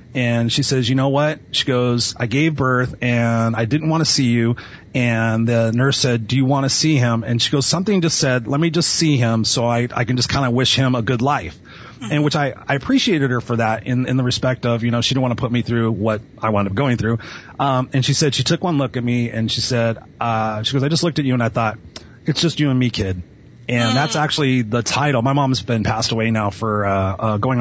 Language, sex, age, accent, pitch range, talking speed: English, male, 30-49, American, 115-135 Hz, 270 wpm